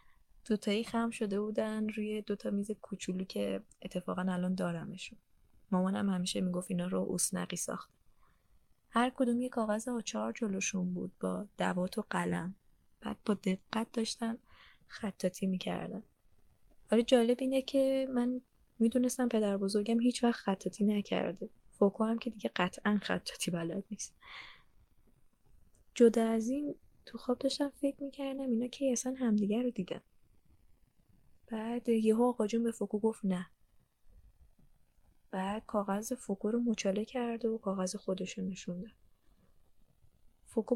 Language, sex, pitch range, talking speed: Persian, female, 190-235 Hz, 135 wpm